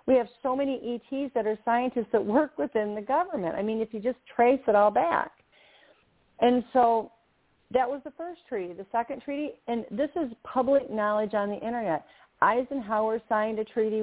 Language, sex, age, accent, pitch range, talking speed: English, female, 40-59, American, 200-255 Hz, 190 wpm